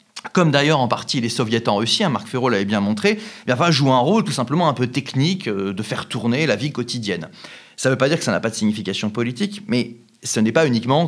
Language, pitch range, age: French, 115-190 Hz, 30-49